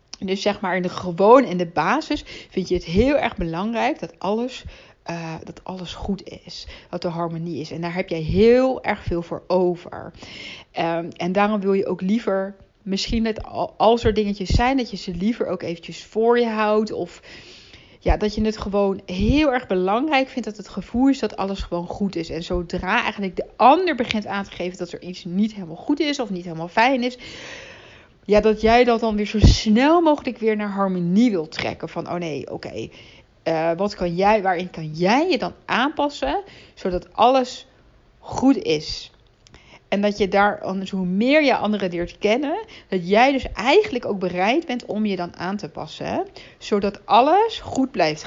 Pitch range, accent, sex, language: 180-235 Hz, Dutch, female, Dutch